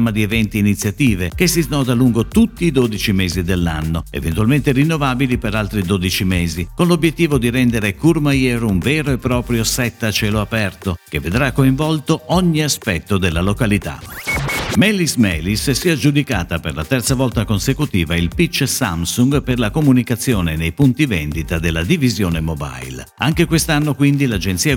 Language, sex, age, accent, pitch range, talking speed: Italian, male, 50-69, native, 90-130 Hz, 155 wpm